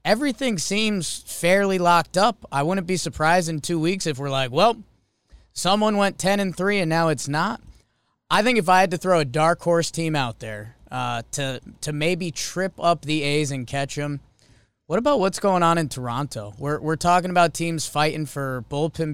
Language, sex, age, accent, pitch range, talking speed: English, male, 20-39, American, 140-195 Hz, 200 wpm